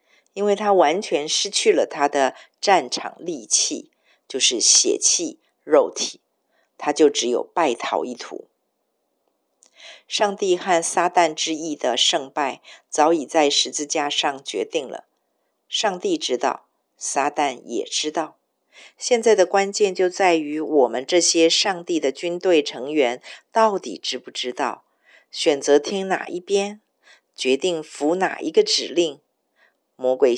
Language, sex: Chinese, female